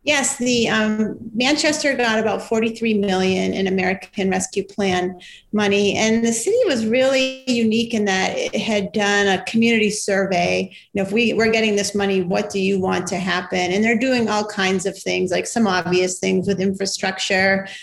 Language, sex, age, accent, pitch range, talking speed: English, female, 40-59, American, 195-225 Hz, 180 wpm